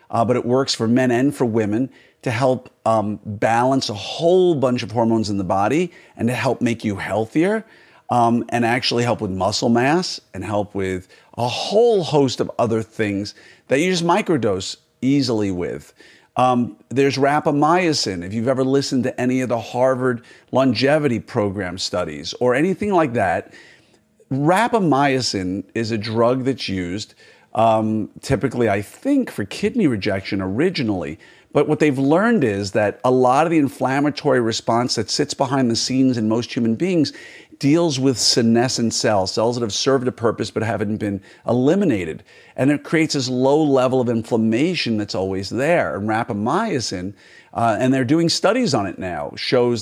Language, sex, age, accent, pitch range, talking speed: English, male, 50-69, American, 110-140 Hz, 165 wpm